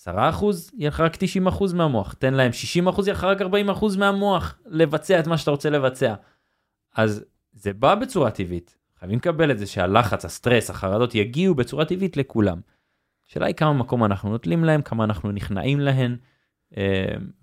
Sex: male